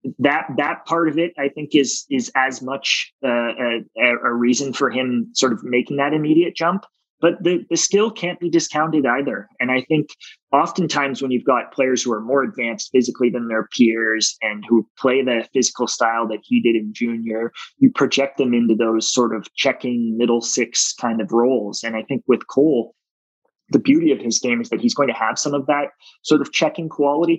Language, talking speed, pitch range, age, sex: English, 205 wpm, 115-160 Hz, 20-39, male